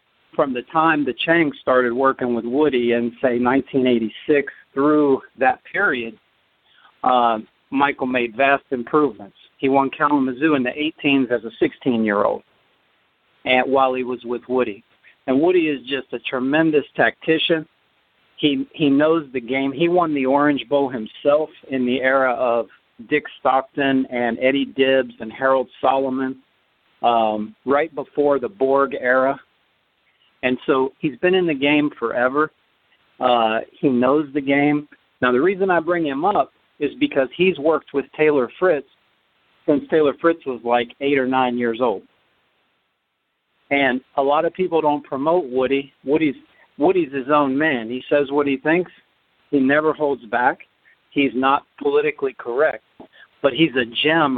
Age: 50-69